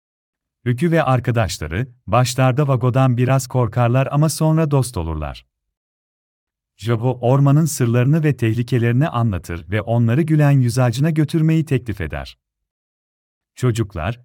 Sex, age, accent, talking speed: male, 40-59, native, 105 wpm